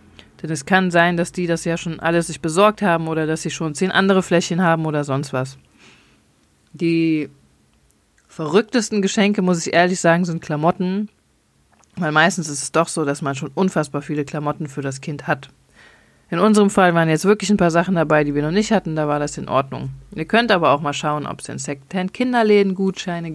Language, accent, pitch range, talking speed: German, German, 155-185 Hz, 205 wpm